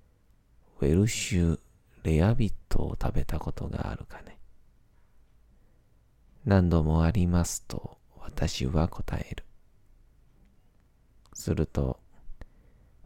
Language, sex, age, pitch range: Japanese, male, 40-59, 75-95 Hz